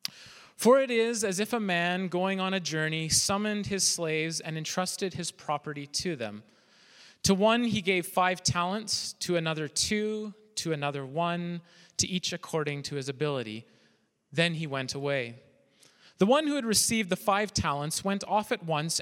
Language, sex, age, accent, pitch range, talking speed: English, male, 30-49, American, 155-200 Hz, 170 wpm